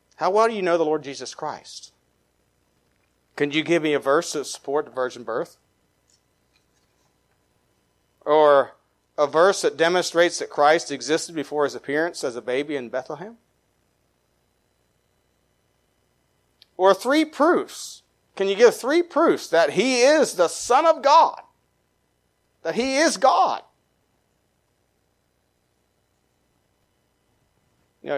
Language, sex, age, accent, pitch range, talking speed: English, male, 40-59, American, 125-180 Hz, 115 wpm